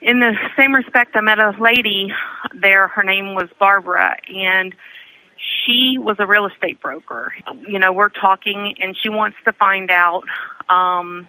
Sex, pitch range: female, 175-205 Hz